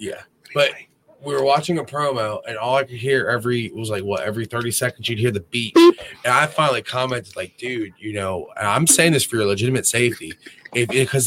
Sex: male